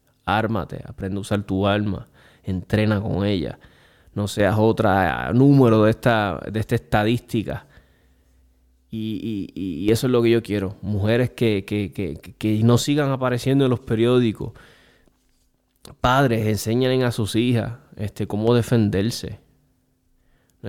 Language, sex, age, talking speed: Spanish, male, 20-39, 135 wpm